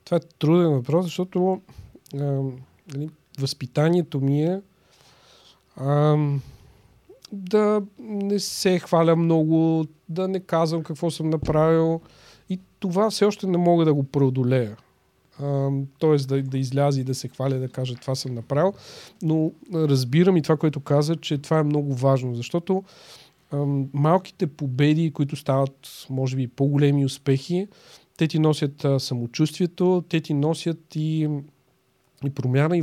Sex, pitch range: male, 135-170 Hz